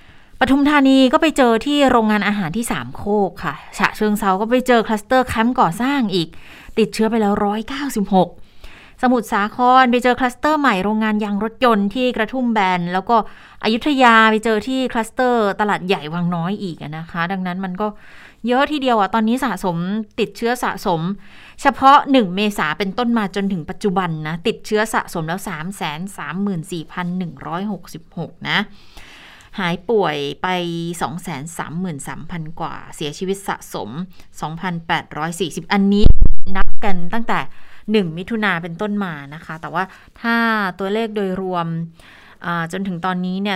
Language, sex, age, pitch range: Thai, female, 20-39, 170-220 Hz